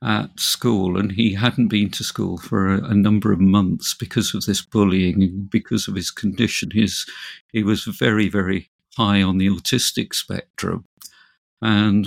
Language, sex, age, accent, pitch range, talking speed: English, male, 50-69, British, 100-115 Hz, 160 wpm